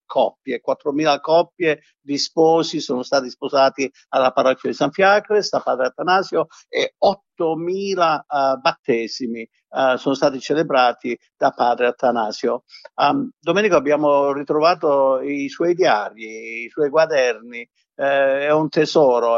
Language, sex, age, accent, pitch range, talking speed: Italian, male, 50-69, native, 130-155 Hz, 125 wpm